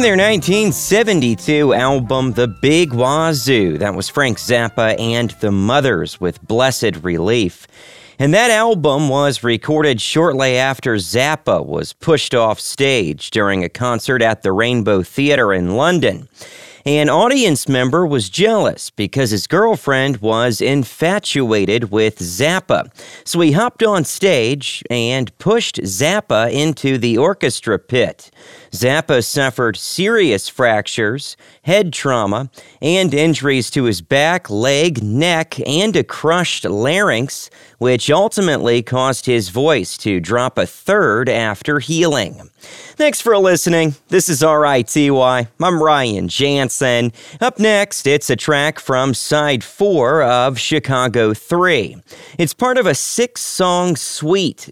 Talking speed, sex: 125 wpm, male